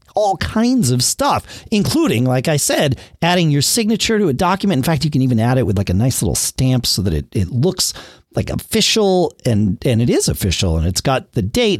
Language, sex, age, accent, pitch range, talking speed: English, male, 40-59, American, 110-185 Hz, 225 wpm